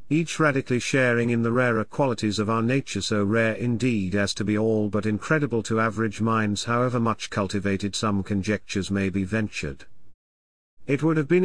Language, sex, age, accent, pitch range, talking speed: English, male, 50-69, British, 105-130 Hz, 180 wpm